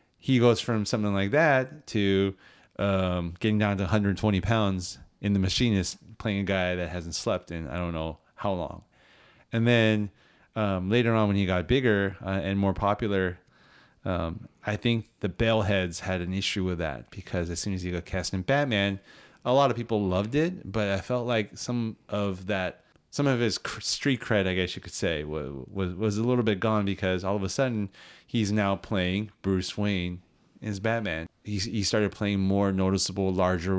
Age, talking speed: 30-49, 190 wpm